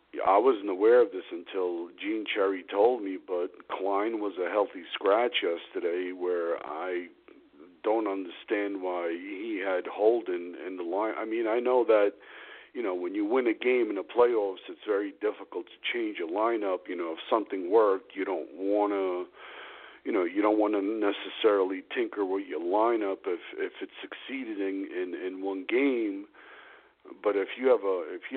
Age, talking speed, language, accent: 50-69, 180 wpm, English, American